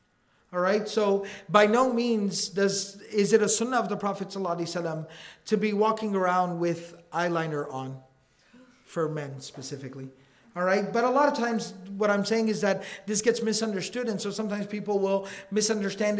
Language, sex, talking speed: English, male, 165 wpm